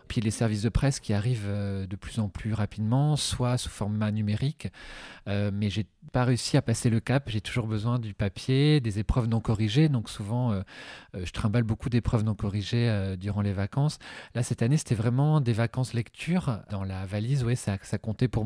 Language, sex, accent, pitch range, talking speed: French, male, French, 105-125 Hz, 205 wpm